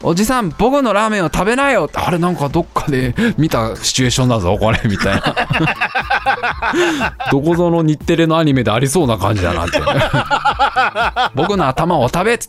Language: Japanese